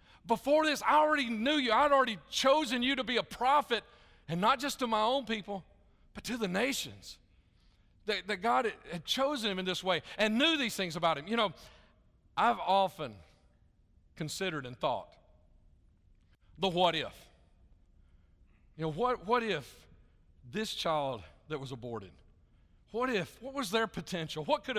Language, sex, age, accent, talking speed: English, male, 40-59, American, 165 wpm